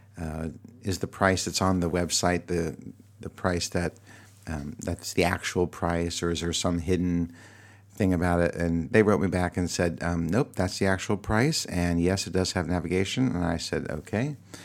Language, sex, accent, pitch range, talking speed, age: English, male, American, 85-100 Hz, 195 wpm, 50-69